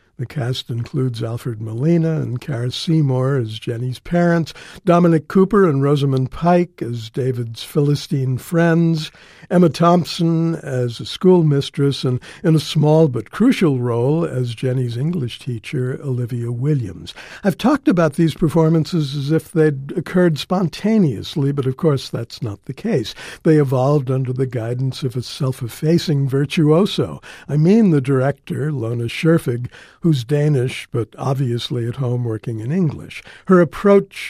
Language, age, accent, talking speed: English, 60-79, American, 145 wpm